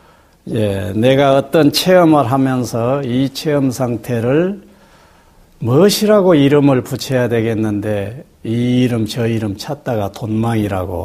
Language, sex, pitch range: Korean, male, 120-185 Hz